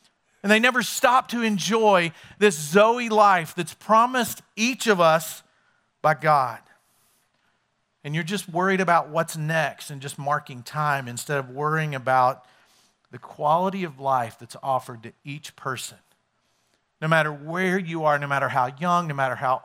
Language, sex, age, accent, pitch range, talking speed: English, male, 50-69, American, 150-205 Hz, 160 wpm